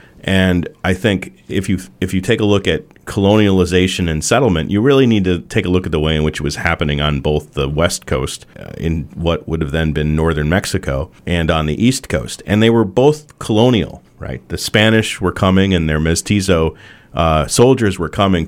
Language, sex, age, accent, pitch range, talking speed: English, male, 40-59, American, 80-95 Hz, 210 wpm